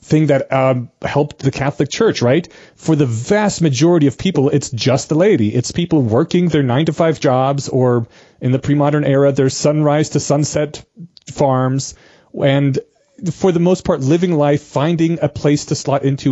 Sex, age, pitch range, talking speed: male, 30-49, 130-155 Hz, 175 wpm